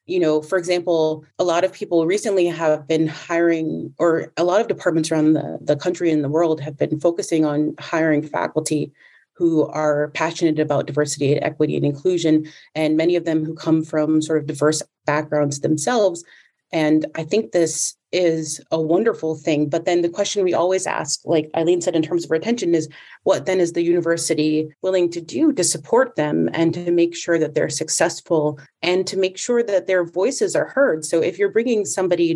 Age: 30-49